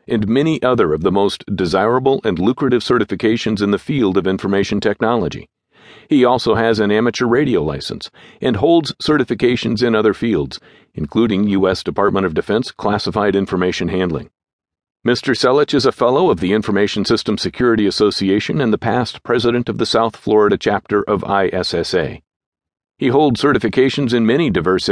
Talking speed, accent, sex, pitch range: 155 wpm, American, male, 100-125 Hz